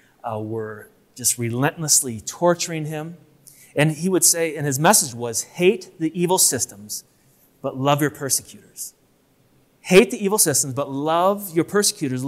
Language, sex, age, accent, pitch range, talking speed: English, male, 30-49, American, 130-170 Hz, 145 wpm